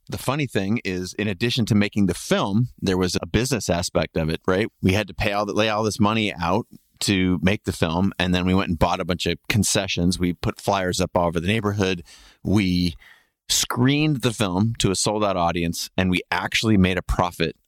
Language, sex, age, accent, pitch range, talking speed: English, male, 30-49, American, 85-105 Hz, 220 wpm